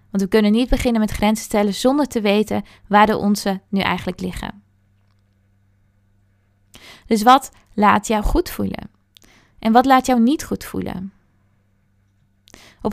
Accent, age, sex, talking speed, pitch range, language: Dutch, 20-39, female, 145 wpm, 195-235 Hz, Dutch